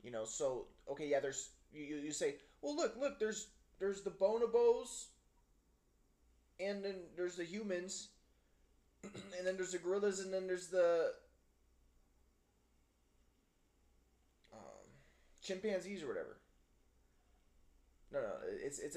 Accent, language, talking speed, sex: American, English, 120 wpm, male